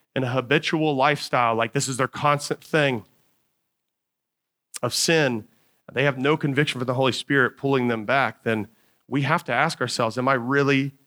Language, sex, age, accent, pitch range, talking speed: English, male, 30-49, American, 125-155 Hz, 175 wpm